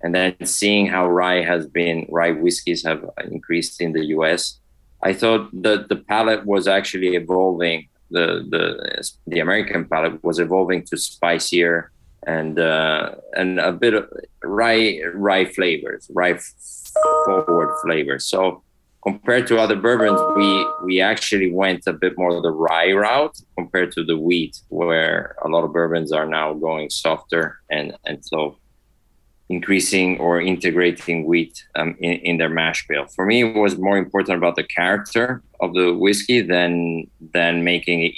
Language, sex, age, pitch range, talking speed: English, male, 20-39, 80-95 Hz, 160 wpm